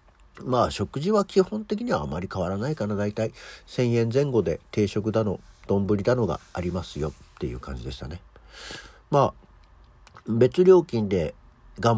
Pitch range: 90-125 Hz